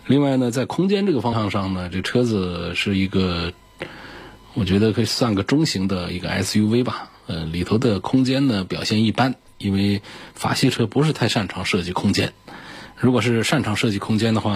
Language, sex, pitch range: Chinese, male, 95-120 Hz